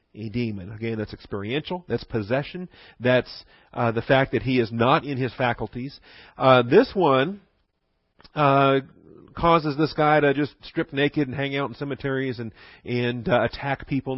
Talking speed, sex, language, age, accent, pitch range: 165 wpm, male, English, 40-59, American, 110-135 Hz